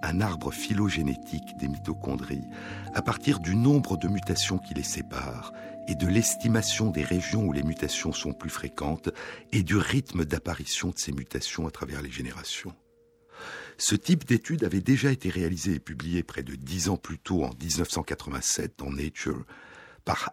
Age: 60-79